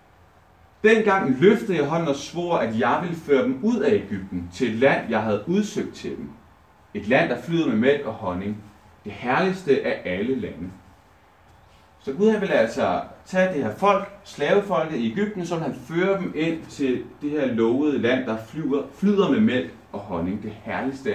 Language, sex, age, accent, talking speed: Danish, male, 30-49, native, 190 wpm